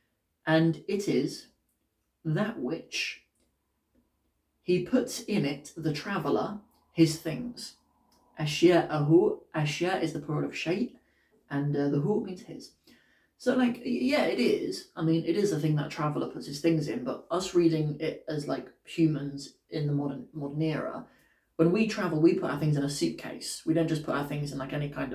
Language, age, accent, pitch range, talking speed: English, 30-49, British, 145-185 Hz, 180 wpm